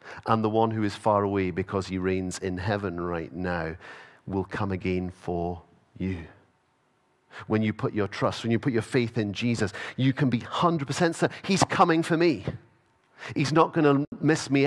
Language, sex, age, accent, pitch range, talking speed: English, male, 40-59, British, 95-130 Hz, 190 wpm